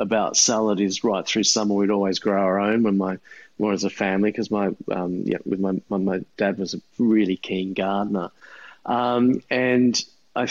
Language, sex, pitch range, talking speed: English, male, 100-110 Hz, 190 wpm